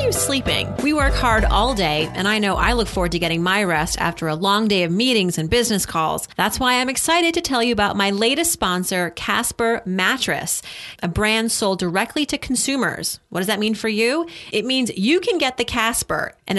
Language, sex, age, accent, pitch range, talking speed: English, female, 30-49, American, 195-260 Hz, 215 wpm